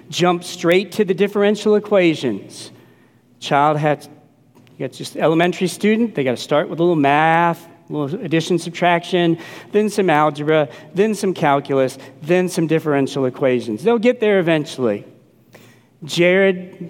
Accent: American